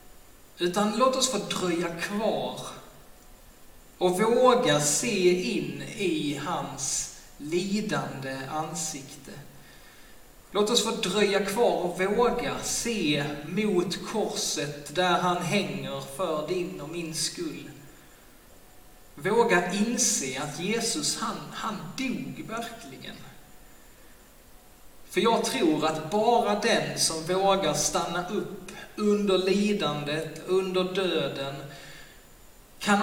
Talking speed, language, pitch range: 100 wpm, Swedish, 155-205 Hz